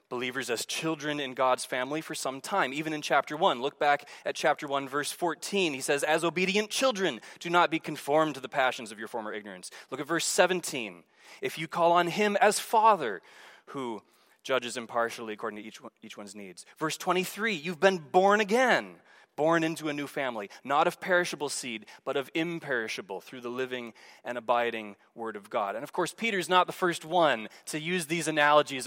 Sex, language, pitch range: male, English, 145-185 Hz